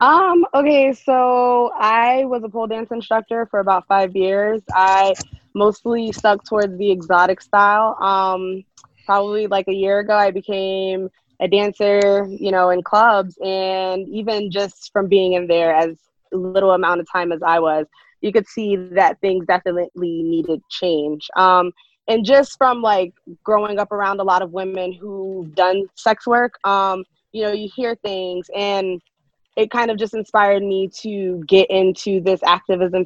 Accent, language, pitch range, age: American, English, 185-210 Hz, 20-39